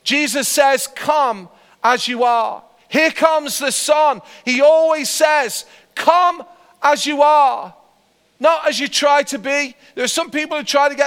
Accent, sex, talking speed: British, male, 170 wpm